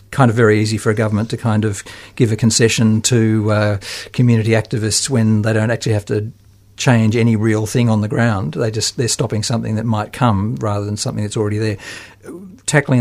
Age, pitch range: 50-69, 110-130 Hz